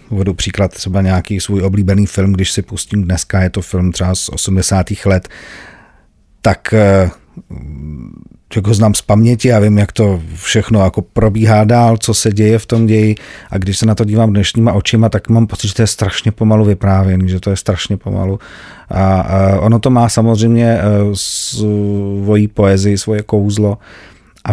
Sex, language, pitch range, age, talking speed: male, Slovak, 95-115 Hz, 40-59, 170 wpm